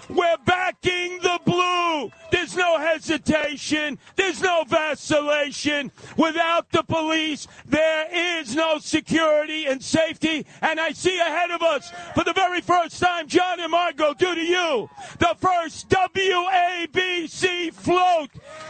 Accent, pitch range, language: American, 295-345 Hz, English